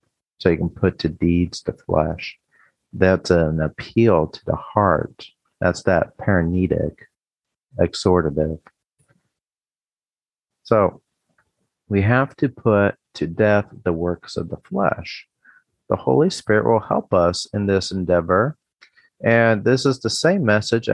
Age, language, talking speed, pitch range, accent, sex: 40-59, English, 130 wpm, 90-110 Hz, American, male